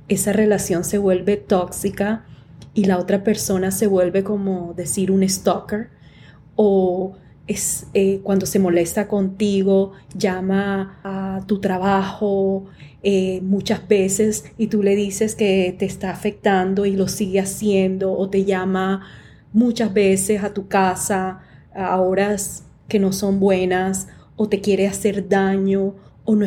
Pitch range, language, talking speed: 185-210 Hz, English, 140 wpm